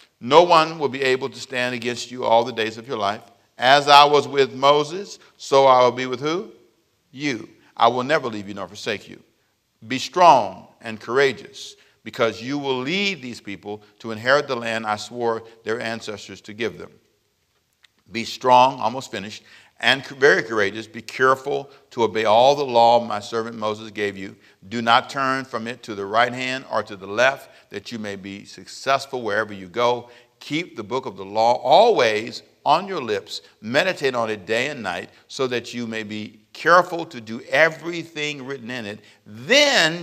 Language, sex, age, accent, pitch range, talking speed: English, male, 50-69, American, 110-140 Hz, 185 wpm